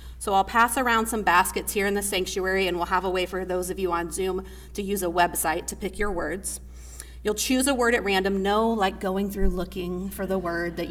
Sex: female